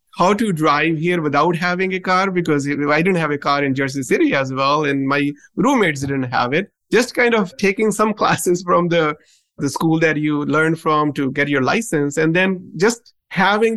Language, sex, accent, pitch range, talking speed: English, male, Indian, 145-180 Hz, 205 wpm